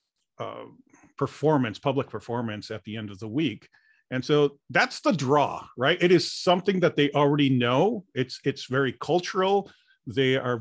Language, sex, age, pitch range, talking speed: English, male, 40-59, 125-155 Hz, 165 wpm